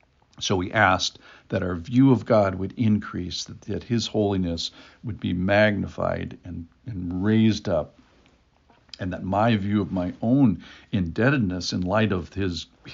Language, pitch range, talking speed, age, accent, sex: English, 90-110 Hz, 155 wpm, 60-79, American, male